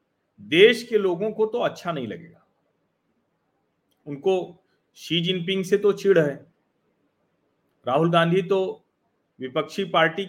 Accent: native